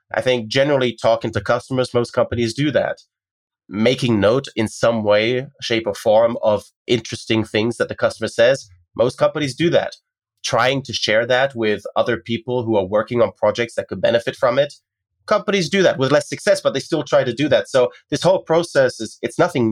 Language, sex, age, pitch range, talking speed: English, male, 30-49, 115-145 Hz, 200 wpm